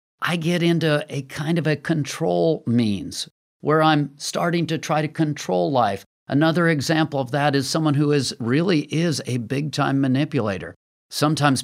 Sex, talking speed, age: male, 165 wpm, 50-69